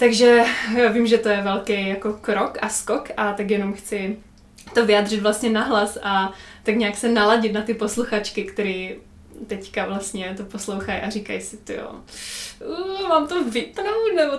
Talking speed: 175 wpm